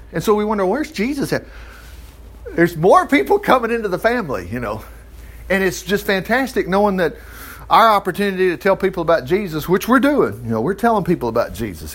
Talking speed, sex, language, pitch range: 195 wpm, male, English, 130-195 Hz